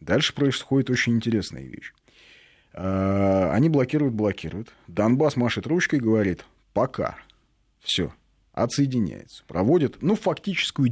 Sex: male